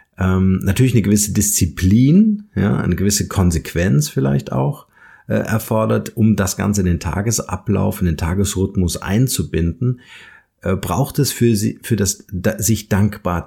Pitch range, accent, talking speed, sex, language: 95-115 Hz, German, 145 wpm, male, German